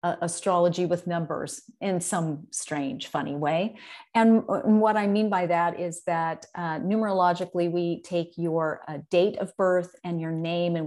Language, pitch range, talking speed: English, 165-205 Hz, 170 wpm